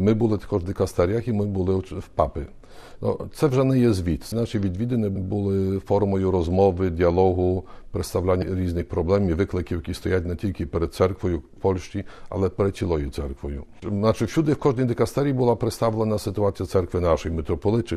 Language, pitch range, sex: Ukrainian, 85-105 Hz, male